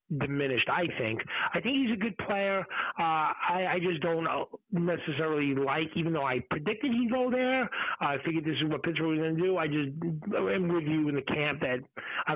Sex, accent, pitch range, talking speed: male, American, 145-190 Hz, 210 wpm